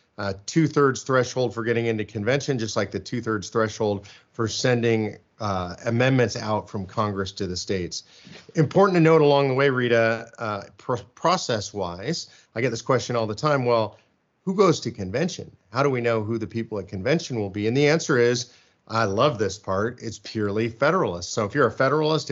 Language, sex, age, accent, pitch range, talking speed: English, male, 40-59, American, 110-140 Hz, 190 wpm